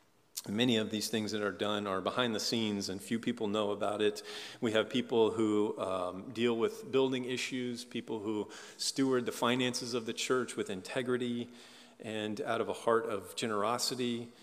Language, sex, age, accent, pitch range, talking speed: English, male, 40-59, American, 115-140 Hz, 180 wpm